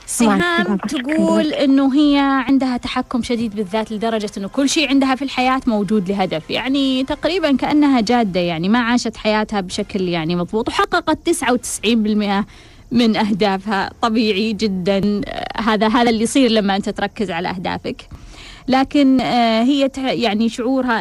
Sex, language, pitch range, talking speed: female, Arabic, 215-275 Hz, 135 wpm